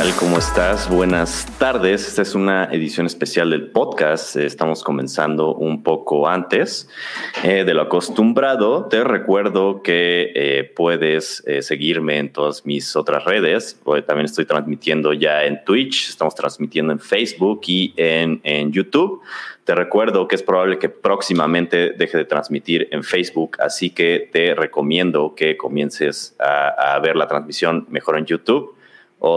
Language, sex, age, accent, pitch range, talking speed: Spanish, male, 30-49, Mexican, 75-90 Hz, 145 wpm